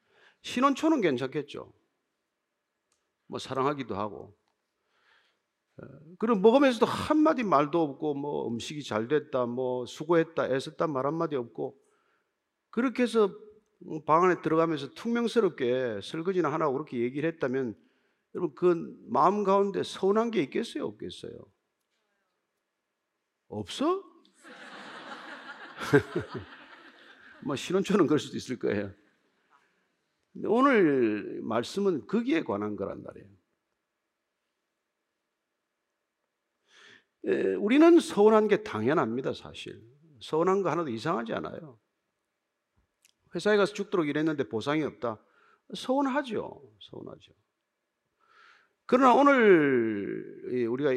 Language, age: Korean, 50-69